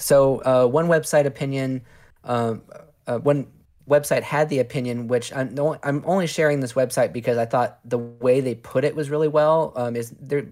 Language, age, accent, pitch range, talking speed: English, 20-39, American, 120-140 Hz, 200 wpm